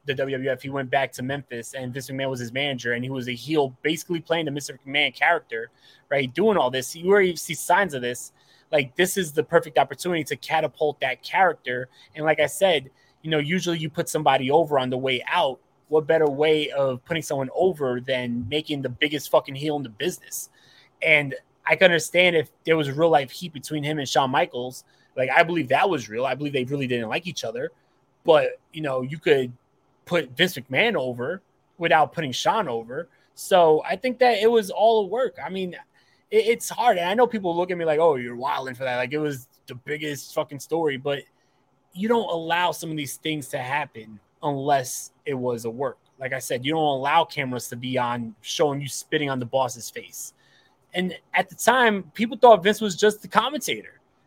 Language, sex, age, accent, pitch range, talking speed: English, male, 20-39, American, 130-175 Hz, 215 wpm